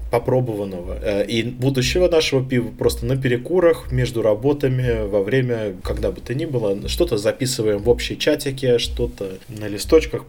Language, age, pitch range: Russian, 20-39, 105-130 Hz